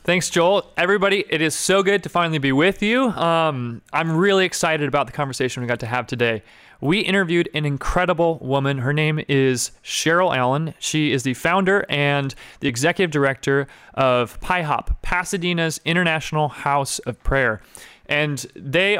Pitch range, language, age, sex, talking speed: 130-175 Hz, English, 30-49, male, 160 wpm